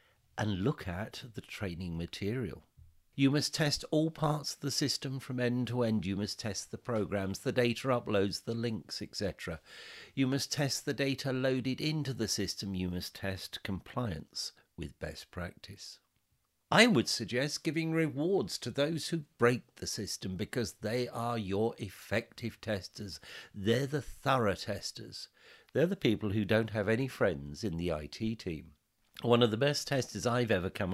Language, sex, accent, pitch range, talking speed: English, male, British, 95-135 Hz, 165 wpm